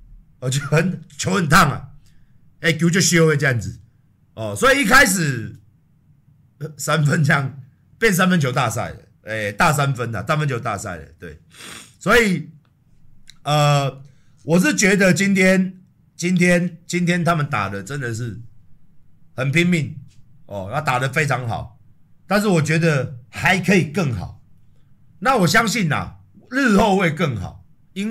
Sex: male